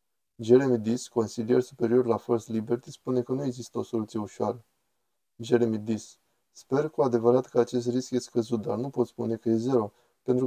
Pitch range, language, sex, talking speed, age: 115-125 Hz, Romanian, male, 185 wpm, 20-39